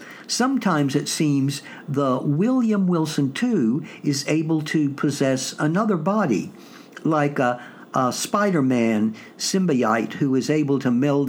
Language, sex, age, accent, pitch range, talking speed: English, male, 60-79, American, 135-180 Hz, 120 wpm